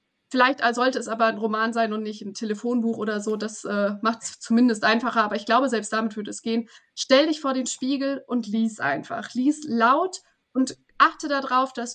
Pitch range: 215-260 Hz